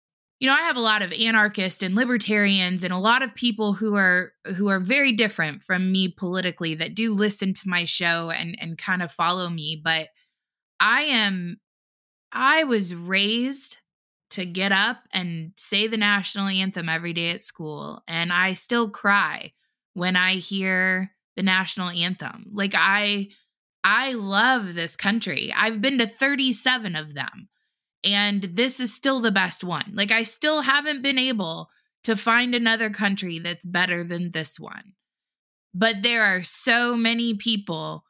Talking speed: 165 wpm